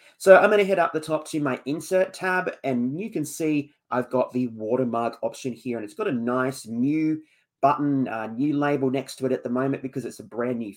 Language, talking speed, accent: English, 235 wpm, Australian